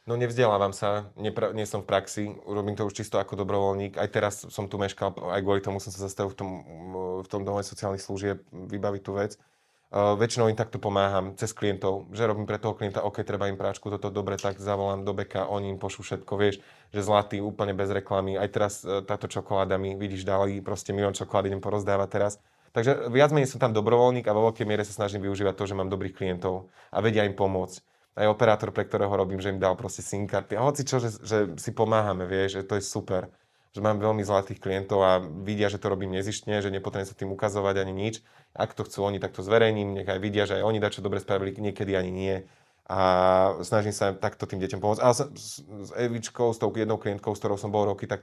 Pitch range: 95-105 Hz